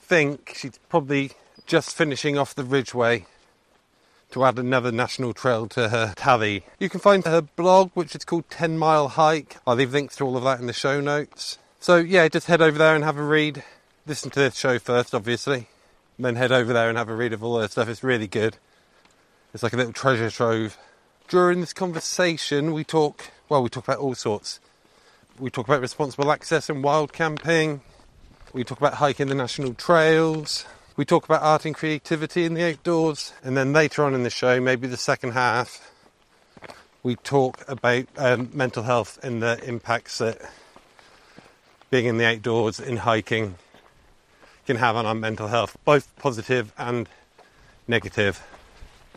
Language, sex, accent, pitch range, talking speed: English, male, British, 120-150 Hz, 180 wpm